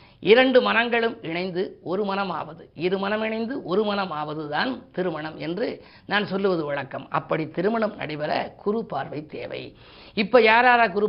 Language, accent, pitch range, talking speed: Tamil, native, 170-210 Hz, 140 wpm